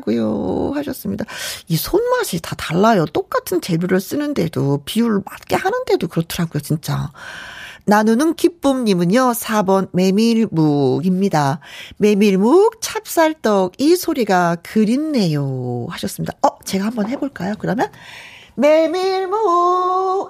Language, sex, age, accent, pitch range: Korean, female, 40-59, native, 190-310 Hz